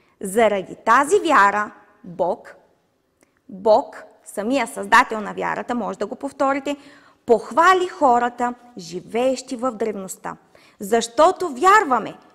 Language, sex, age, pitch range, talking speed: Bulgarian, female, 20-39, 220-315 Hz, 95 wpm